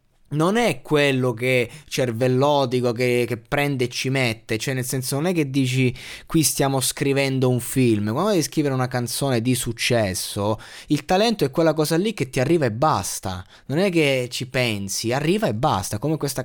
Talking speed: 185 wpm